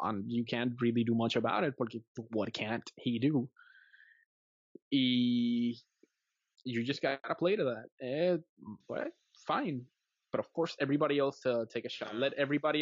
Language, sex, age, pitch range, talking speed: English, male, 20-39, 125-180 Hz, 160 wpm